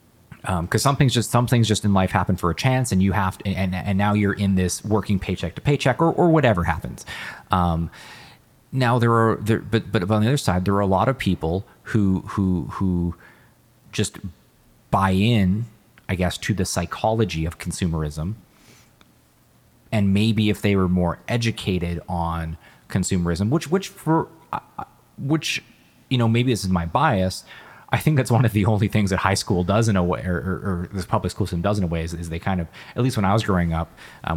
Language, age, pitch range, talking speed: English, 30-49, 85-110 Hz, 210 wpm